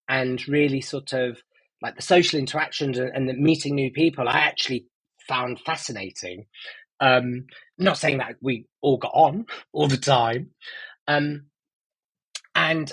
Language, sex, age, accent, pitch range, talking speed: English, male, 20-39, British, 125-160 Hz, 140 wpm